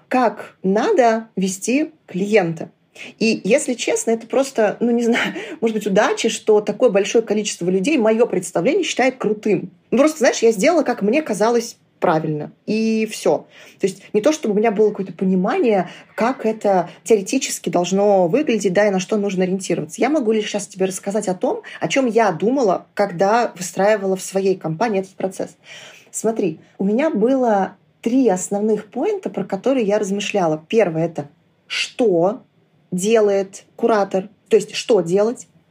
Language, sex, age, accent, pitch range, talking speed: Russian, female, 20-39, native, 190-230 Hz, 160 wpm